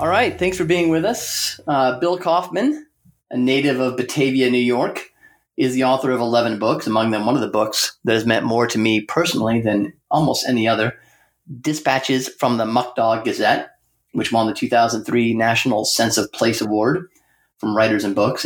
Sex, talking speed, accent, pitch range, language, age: male, 190 wpm, American, 115-130 Hz, English, 30-49